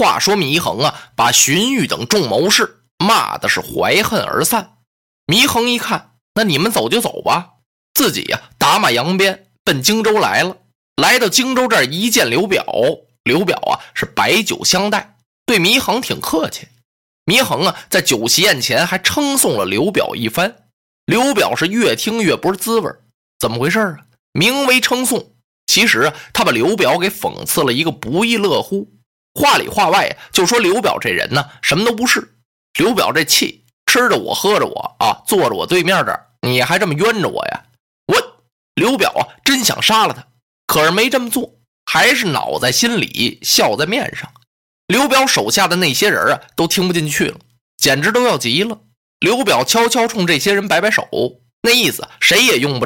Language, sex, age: Chinese, male, 20-39